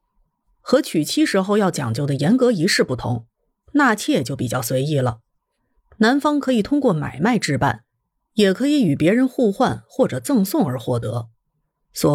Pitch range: 155-245 Hz